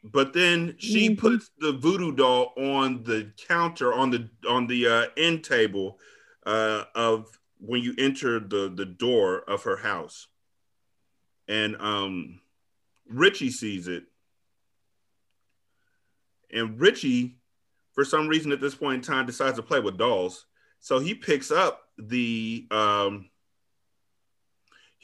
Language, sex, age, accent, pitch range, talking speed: English, male, 30-49, American, 100-150 Hz, 130 wpm